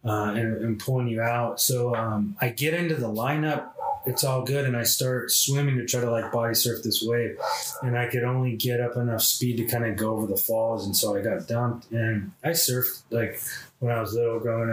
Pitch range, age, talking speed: 110-125 Hz, 20-39, 230 wpm